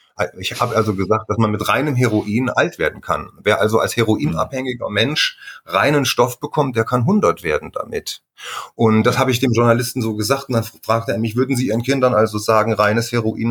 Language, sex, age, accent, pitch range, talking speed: German, male, 30-49, German, 115-145 Hz, 205 wpm